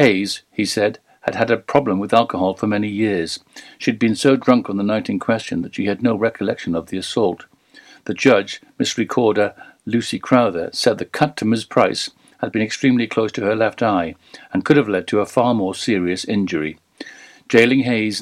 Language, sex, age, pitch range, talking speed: English, male, 60-79, 100-130 Hz, 205 wpm